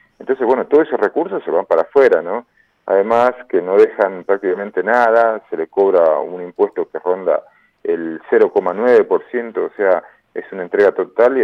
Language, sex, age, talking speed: Spanish, male, 40-59, 170 wpm